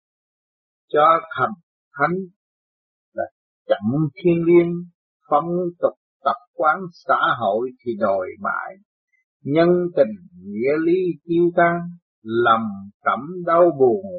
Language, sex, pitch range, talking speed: Vietnamese, male, 135-180 Hz, 110 wpm